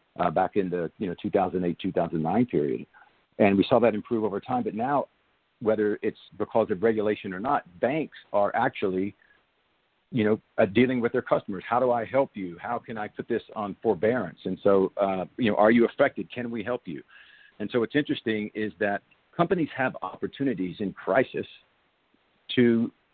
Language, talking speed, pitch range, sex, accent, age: English, 180 wpm, 95-120 Hz, male, American, 50-69